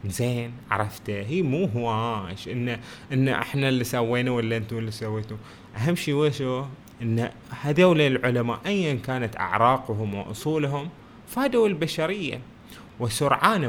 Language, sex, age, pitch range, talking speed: Arabic, male, 20-39, 105-130 Hz, 125 wpm